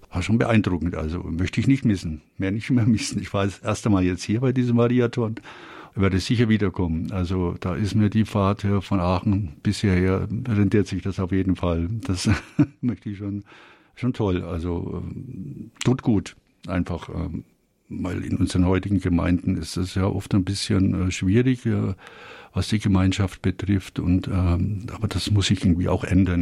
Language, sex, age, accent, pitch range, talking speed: German, male, 60-79, German, 90-105 Hz, 175 wpm